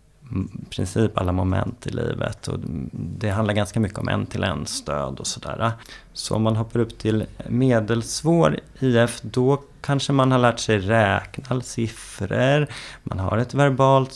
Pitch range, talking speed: 105-125 Hz, 160 wpm